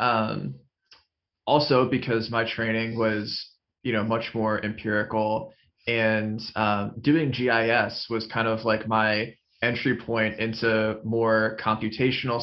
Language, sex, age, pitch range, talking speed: English, male, 20-39, 110-120 Hz, 120 wpm